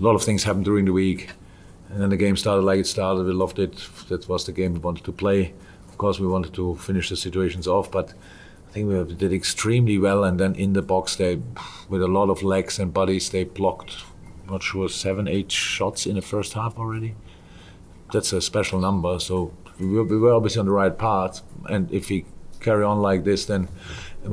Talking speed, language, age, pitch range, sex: 220 wpm, English, 50-69, 90-105 Hz, male